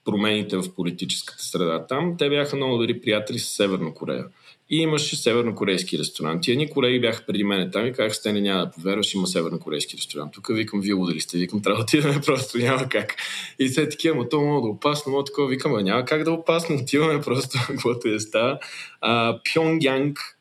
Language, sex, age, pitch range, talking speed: Bulgarian, male, 20-39, 95-130 Hz, 190 wpm